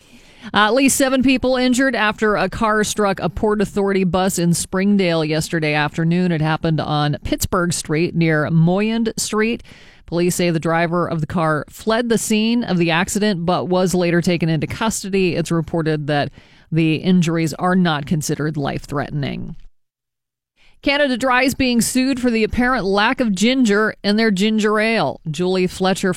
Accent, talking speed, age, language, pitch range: American, 165 wpm, 40-59, English, 165-215 Hz